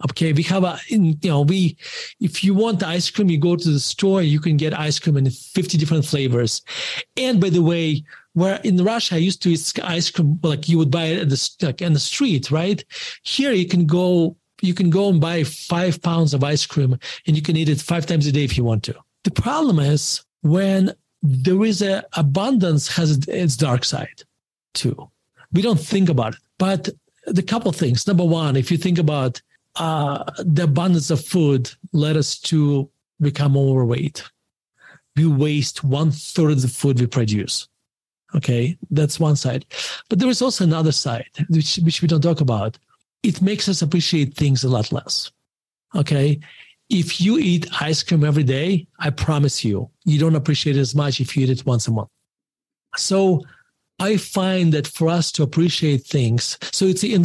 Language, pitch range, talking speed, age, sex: English, 145-180 Hz, 195 wpm, 40-59, male